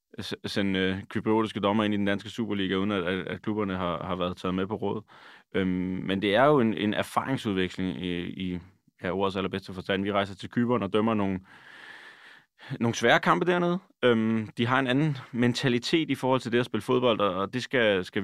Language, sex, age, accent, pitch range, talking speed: Danish, male, 20-39, native, 95-115 Hz, 195 wpm